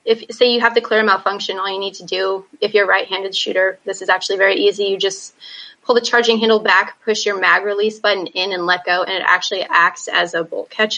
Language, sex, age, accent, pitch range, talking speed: English, female, 20-39, American, 190-215 Hz, 255 wpm